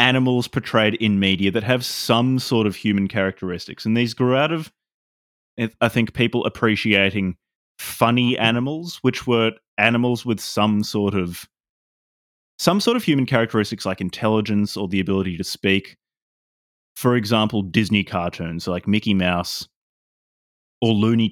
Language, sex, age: English, male, 20-39